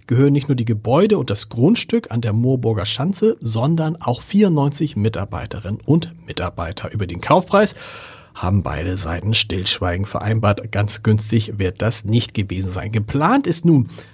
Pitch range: 105-150 Hz